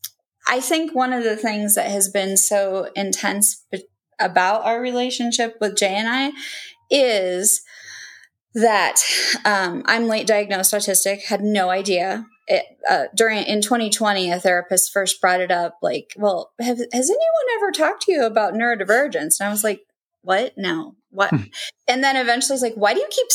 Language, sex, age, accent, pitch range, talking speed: English, female, 20-39, American, 190-250 Hz, 175 wpm